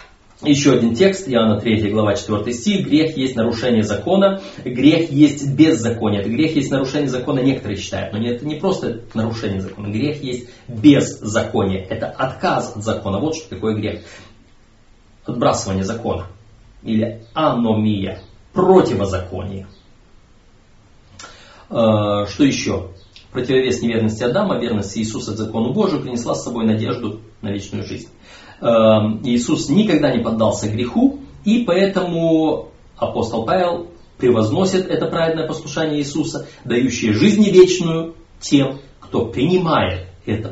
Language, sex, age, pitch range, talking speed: Russian, male, 30-49, 105-140 Hz, 120 wpm